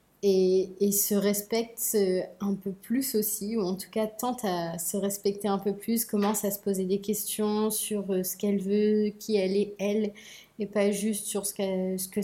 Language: French